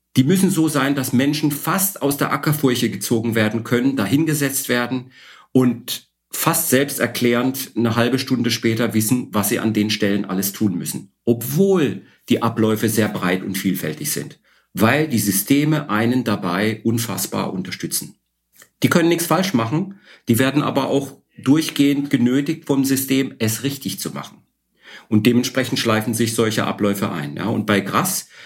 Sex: male